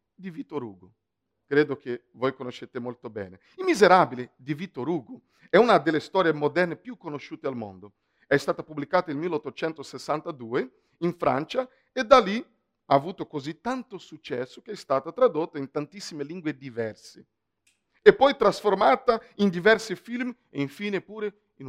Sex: male